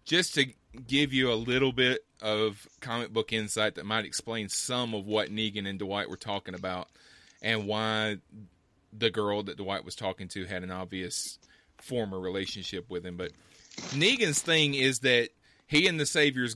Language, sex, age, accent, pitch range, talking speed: English, male, 30-49, American, 95-120 Hz, 175 wpm